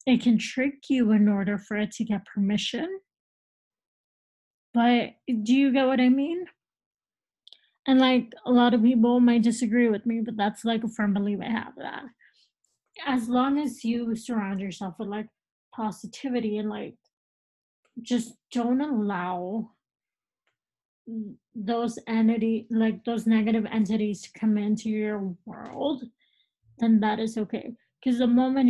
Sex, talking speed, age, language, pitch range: female, 145 wpm, 20-39, English, 210-245 Hz